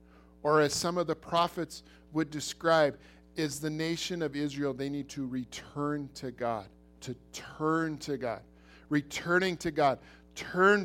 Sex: male